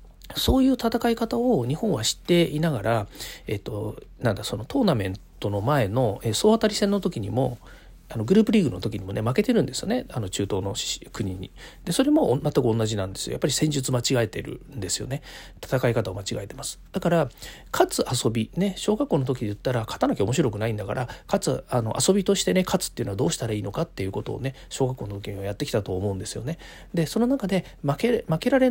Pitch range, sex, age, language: 115-190 Hz, male, 40-59, Japanese